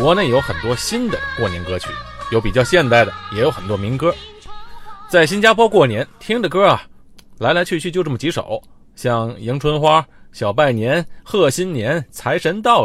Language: Chinese